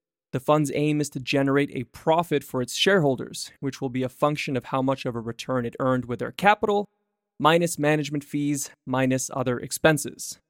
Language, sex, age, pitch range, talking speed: English, male, 20-39, 130-160 Hz, 190 wpm